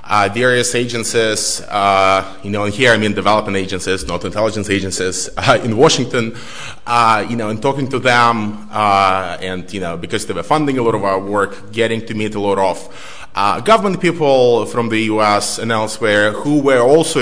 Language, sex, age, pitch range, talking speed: English, male, 20-39, 105-140 Hz, 190 wpm